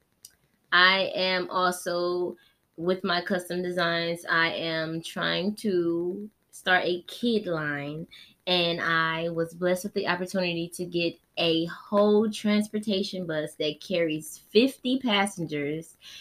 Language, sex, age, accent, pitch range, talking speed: English, female, 20-39, American, 165-200 Hz, 120 wpm